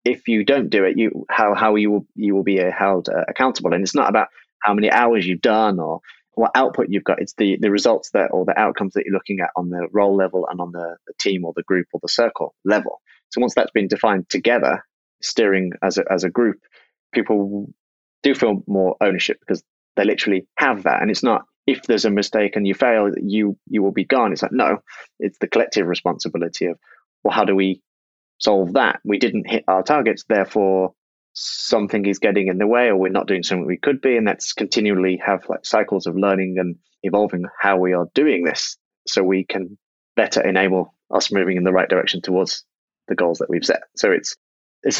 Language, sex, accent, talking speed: English, male, British, 215 wpm